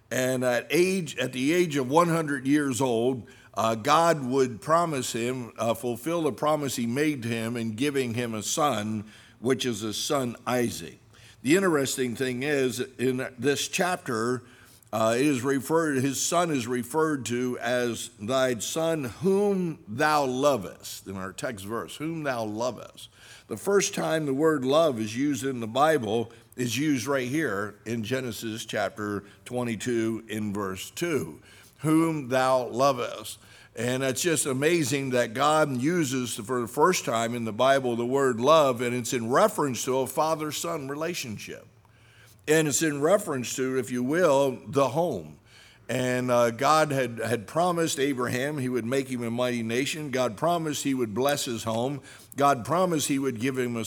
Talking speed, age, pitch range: 165 wpm, 60-79, 115-145 Hz